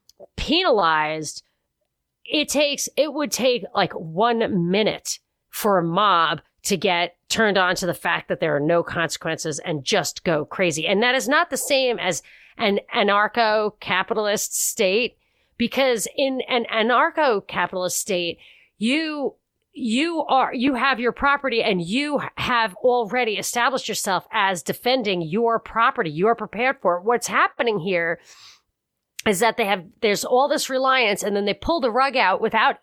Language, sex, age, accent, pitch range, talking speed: English, female, 40-59, American, 195-255 Hz, 155 wpm